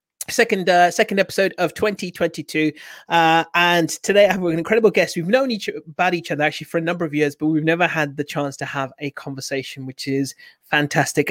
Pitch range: 150-180 Hz